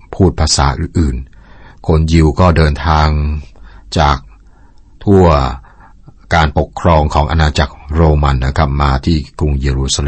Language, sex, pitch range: Thai, male, 70-85 Hz